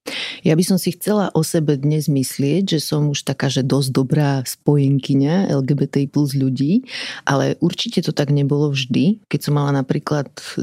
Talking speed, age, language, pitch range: 170 wpm, 30-49, Slovak, 140-165 Hz